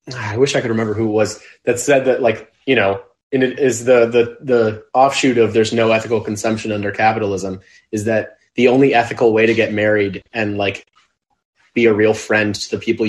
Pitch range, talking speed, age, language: 100-120 Hz, 210 wpm, 20-39, English